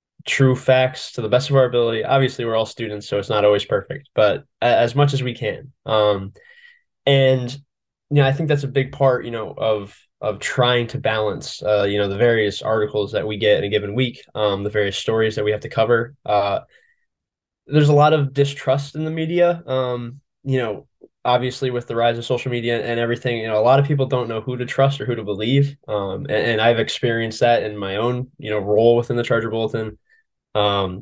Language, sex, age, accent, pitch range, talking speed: English, male, 10-29, American, 110-140 Hz, 225 wpm